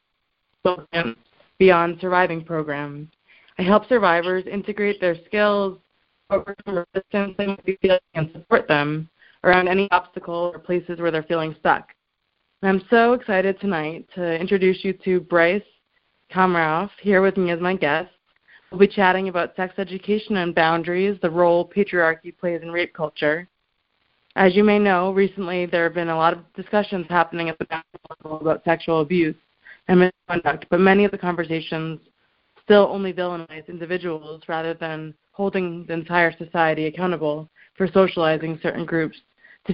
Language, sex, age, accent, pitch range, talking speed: English, female, 20-39, American, 165-195 Hz, 145 wpm